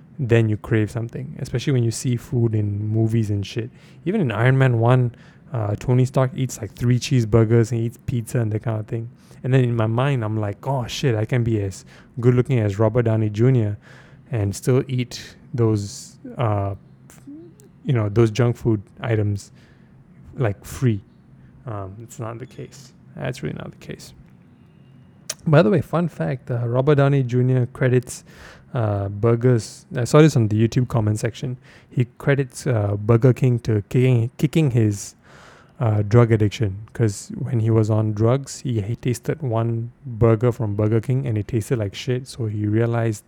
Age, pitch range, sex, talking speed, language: 20-39, 110-130 Hz, male, 180 wpm, English